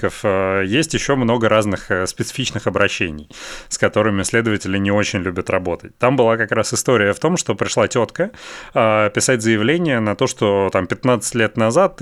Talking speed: 160 wpm